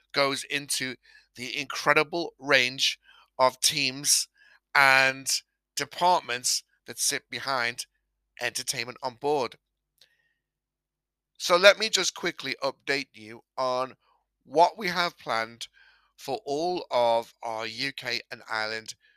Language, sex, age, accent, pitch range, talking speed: English, male, 50-69, British, 125-170 Hz, 105 wpm